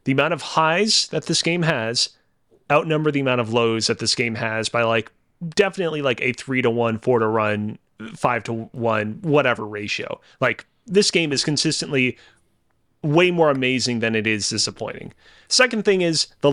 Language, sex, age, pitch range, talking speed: English, male, 30-49, 115-165 Hz, 180 wpm